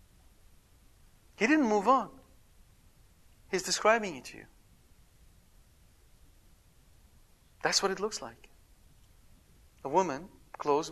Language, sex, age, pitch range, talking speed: English, male, 40-59, 120-170 Hz, 95 wpm